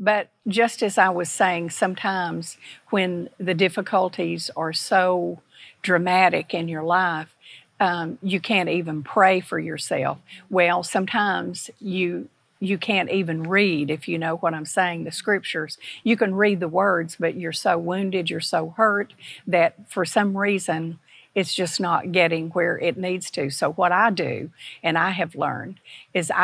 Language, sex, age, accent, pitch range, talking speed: English, female, 50-69, American, 170-195 Hz, 160 wpm